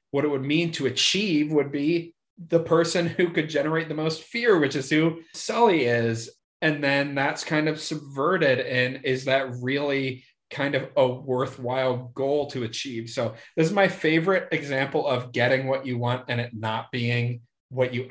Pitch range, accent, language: 125-155 Hz, American, English